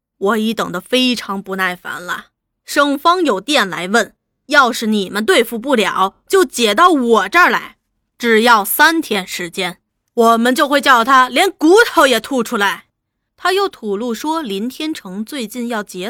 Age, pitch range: 20-39, 205-330 Hz